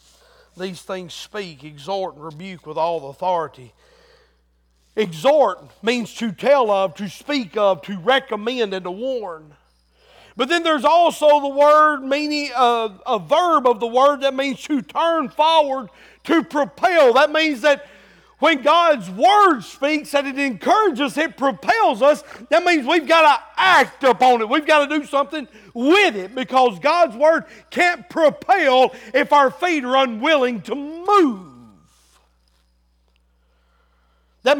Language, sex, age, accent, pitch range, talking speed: English, male, 50-69, American, 225-335 Hz, 145 wpm